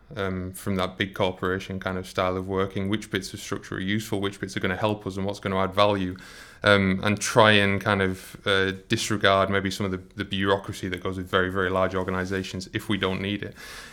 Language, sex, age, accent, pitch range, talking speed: English, male, 20-39, British, 95-105 Hz, 230 wpm